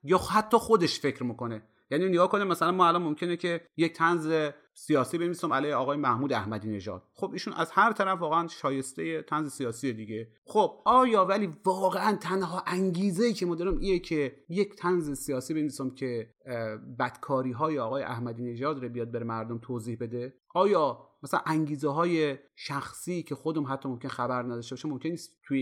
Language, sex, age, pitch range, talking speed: English, male, 30-49, 135-180 Hz, 175 wpm